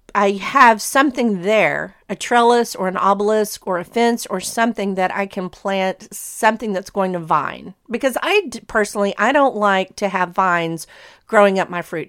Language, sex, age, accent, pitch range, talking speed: English, female, 40-59, American, 185-230 Hz, 180 wpm